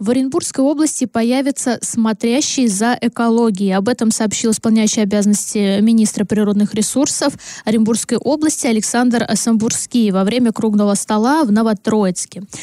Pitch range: 215-260 Hz